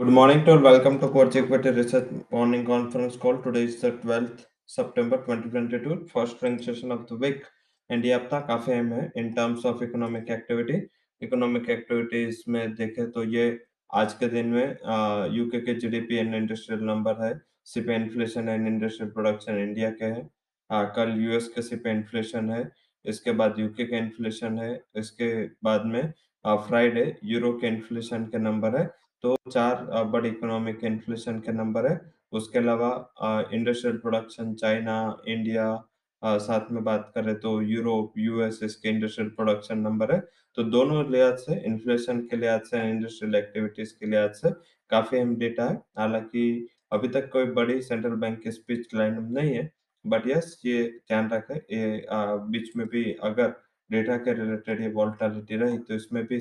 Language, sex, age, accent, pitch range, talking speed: English, male, 20-39, Indian, 110-120 Hz, 135 wpm